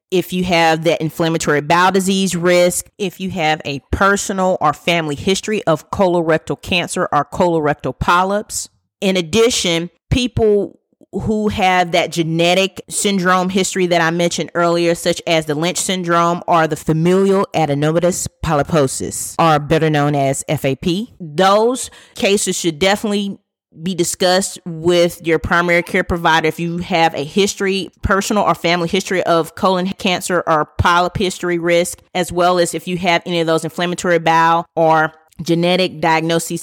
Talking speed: 150 wpm